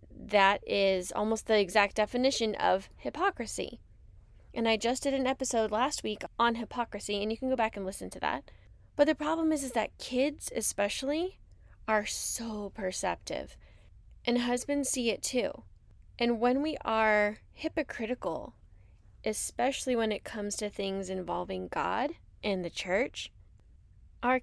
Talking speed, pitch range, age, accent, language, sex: 145 wpm, 195-245 Hz, 10-29, American, English, female